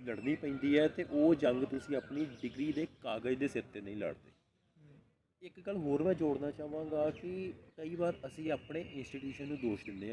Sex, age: male, 40-59